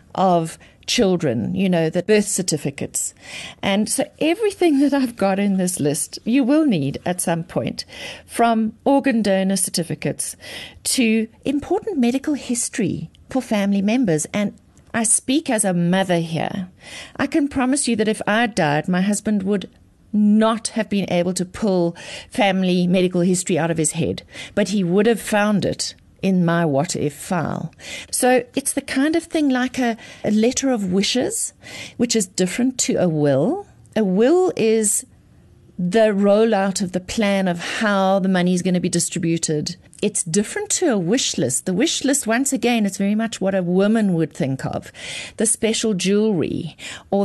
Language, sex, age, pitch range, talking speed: English, female, 50-69, 180-235 Hz, 170 wpm